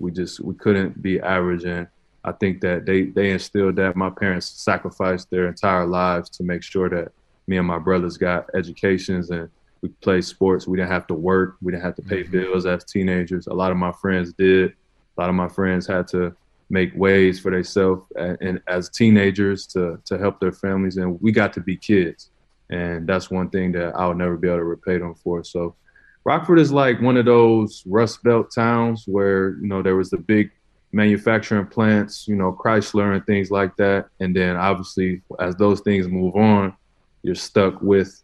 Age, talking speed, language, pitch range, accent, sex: 20-39, 200 wpm, English, 90-100 Hz, American, male